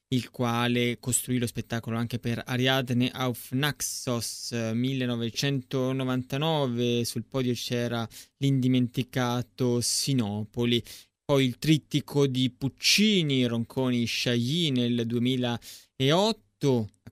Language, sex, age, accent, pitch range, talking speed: Italian, male, 20-39, native, 120-140 Hz, 90 wpm